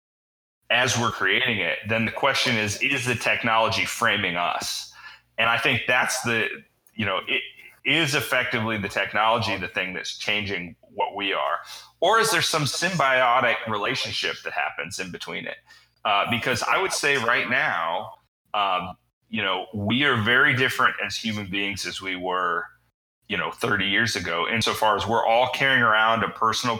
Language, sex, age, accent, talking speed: English, male, 30-49, American, 170 wpm